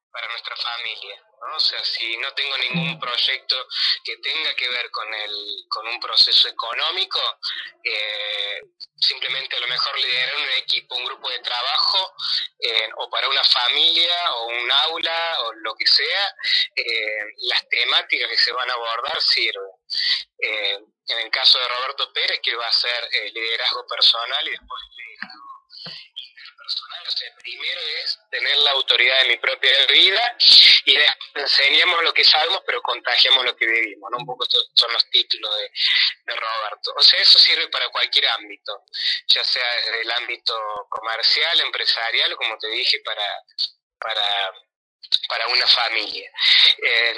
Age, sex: 20-39, male